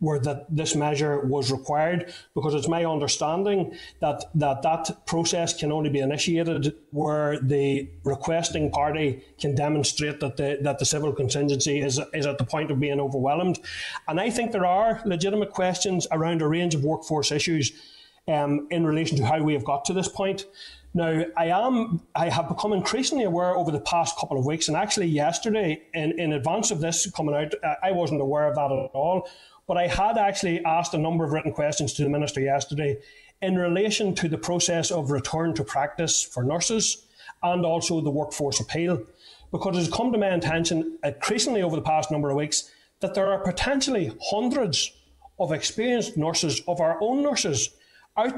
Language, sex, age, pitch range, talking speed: English, male, 30-49, 145-185 Hz, 185 wpm